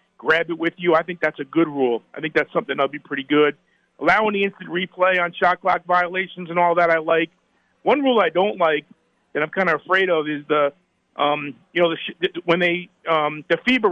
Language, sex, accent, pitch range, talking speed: English, male, American, 165-205 Hz, 235 wpm